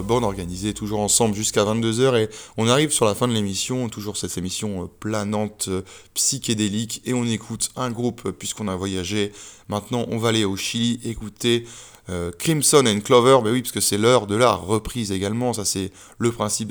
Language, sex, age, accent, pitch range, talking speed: French, male, 20-39, French, 100-115 Hz, 185 wpm